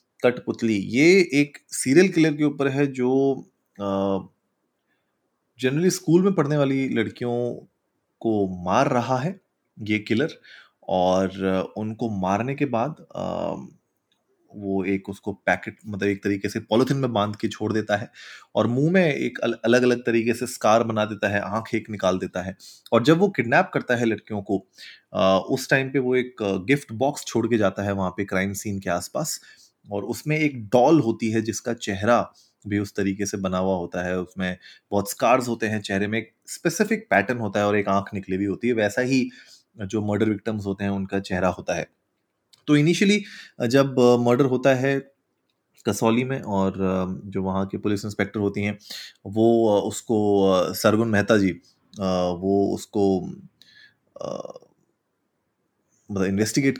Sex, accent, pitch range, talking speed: male, native, 100-125 Hz, 165 wpm